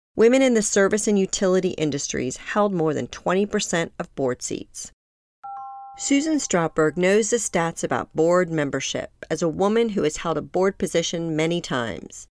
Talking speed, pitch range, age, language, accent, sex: 160 wpm, 155-210 Hz, 40-59, English, American, female